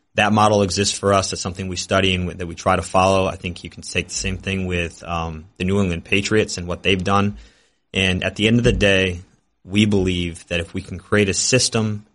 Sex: male